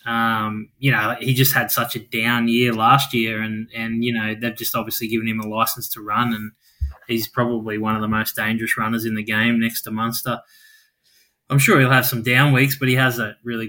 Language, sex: English, male